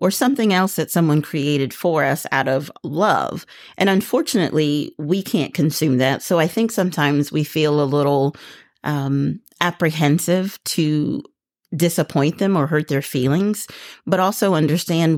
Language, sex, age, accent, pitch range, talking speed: English, female, 40-59, American, 145-175 Hz, 145 wpm